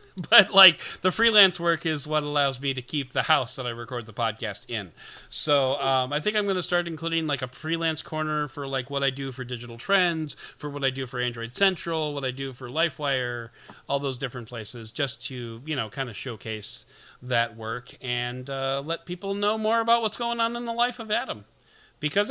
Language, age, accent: English, 40-59, American